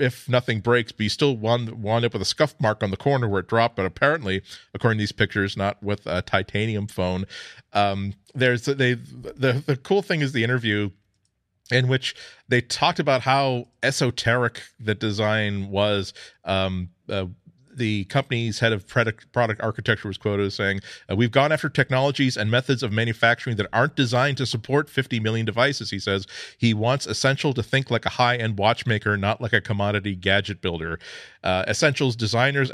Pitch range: 105-135 Hz